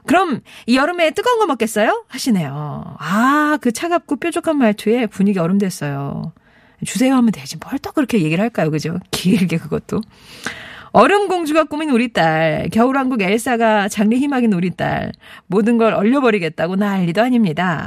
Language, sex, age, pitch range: Korean, female, 40-59, 180-265 Hz